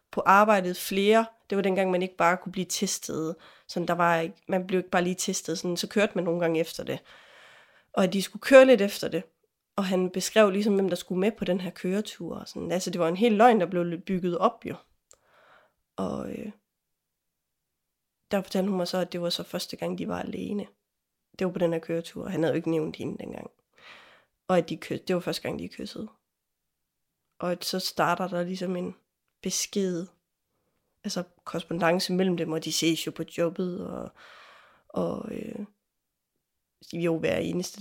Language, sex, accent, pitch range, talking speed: English, female, Danish, 175-200 Hz, 190 wpm